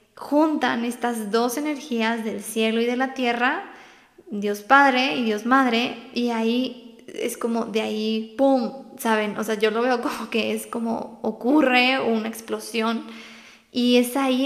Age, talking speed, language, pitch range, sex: 20-39, 160 wpm, Spanish, 220-255 Hz, female